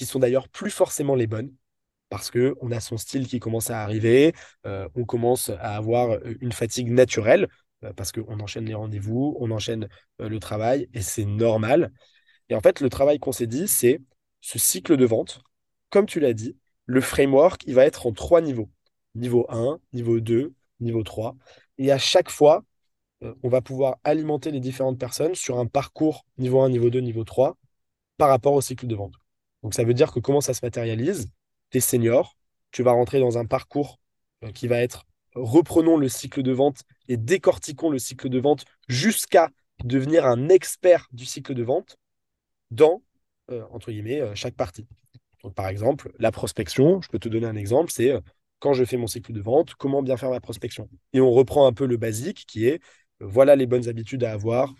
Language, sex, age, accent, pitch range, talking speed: French, male, 20-39, French, 115-135 Hz, 200 wpm